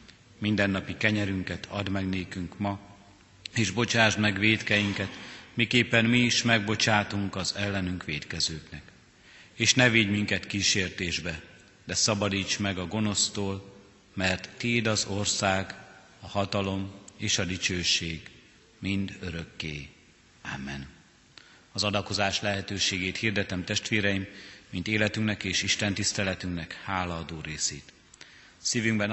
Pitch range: 90-110 Hz